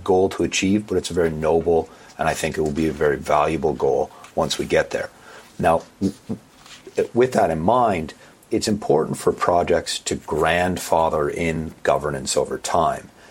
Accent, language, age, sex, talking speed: American, English, 40-59, male, 165 wpm